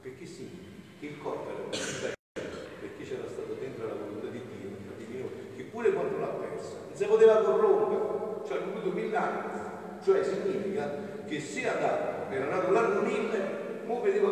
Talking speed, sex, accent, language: 170 wpm, male, native, Italian